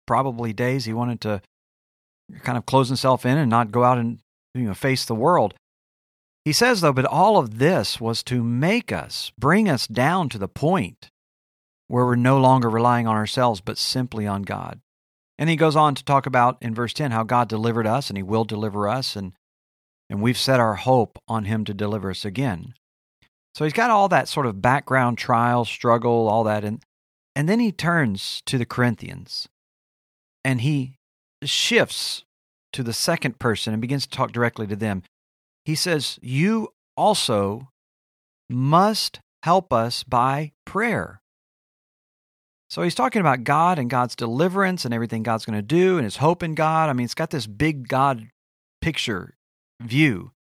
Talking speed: 180 wpm